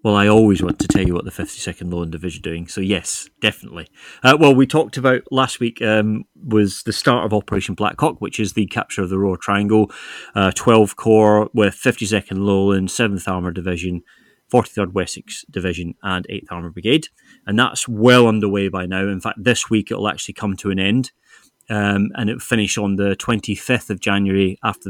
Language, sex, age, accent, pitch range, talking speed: English, male, 30-49, British, 95-115 Hz, 195 wpm